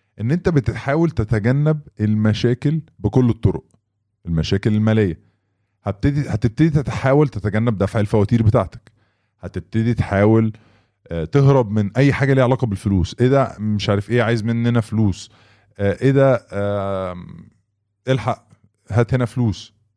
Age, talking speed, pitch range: 20-39, 110 wpm, 100-125 Hz